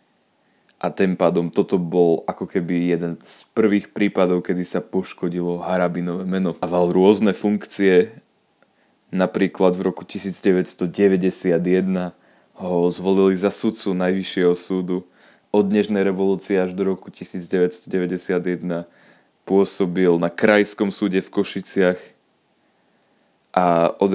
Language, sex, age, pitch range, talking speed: Slovak, male, 20-39, 90-100 Hz, 110 wpm